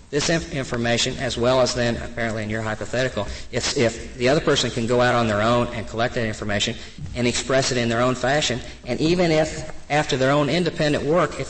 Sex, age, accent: male, 50-69, American